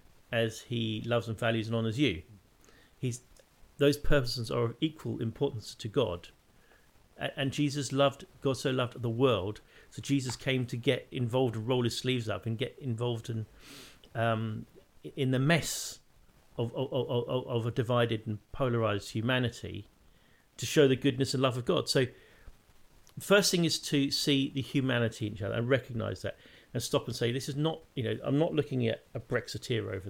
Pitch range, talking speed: 110-130 Hz, 180 wpm